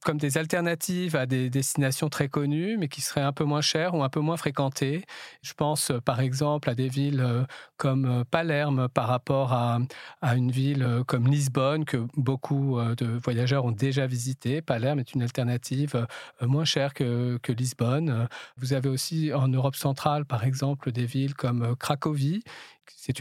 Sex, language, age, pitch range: male, French, 40-59, 125-150 Hz